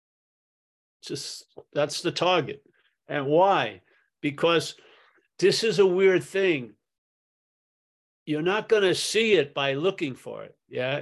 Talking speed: 125 wpm